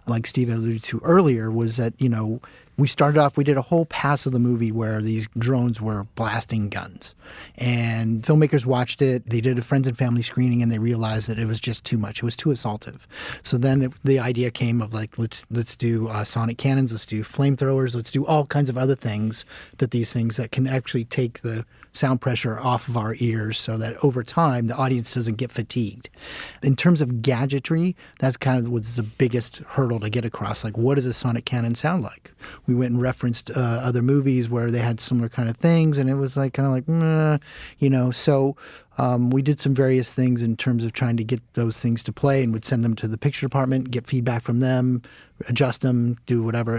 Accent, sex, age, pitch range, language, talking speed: American, male, 30-49, 115-135 Hz, English, 225 wpm